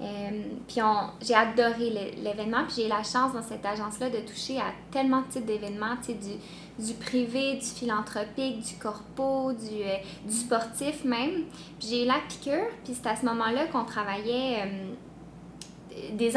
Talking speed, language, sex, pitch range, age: 185 wpm, French, female, 215-255 Hz, 20-39